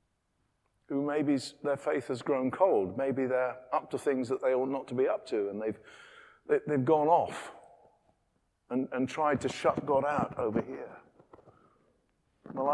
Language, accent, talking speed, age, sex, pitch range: English, British, 165 wpm, 50-69, male, 115-145 Hz